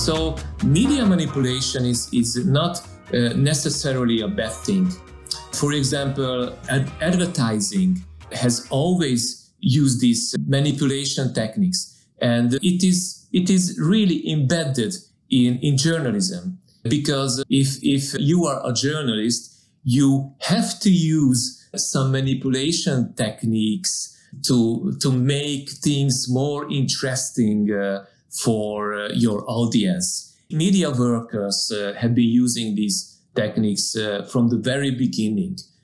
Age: 40-59